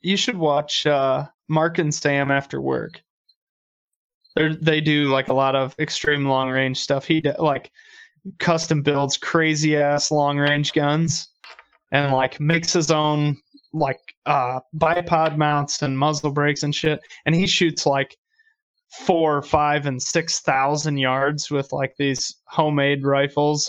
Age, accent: 20-39, American